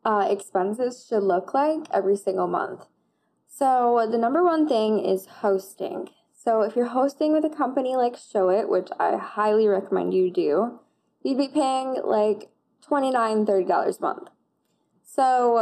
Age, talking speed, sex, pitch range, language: 10-29, 155 wpm, female, 195-255 Hz, English